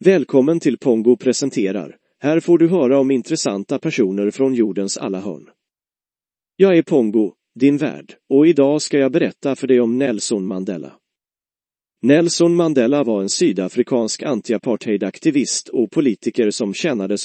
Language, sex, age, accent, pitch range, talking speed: Swedish, male, 40-59, native, 110-150 Hz, 145 wpm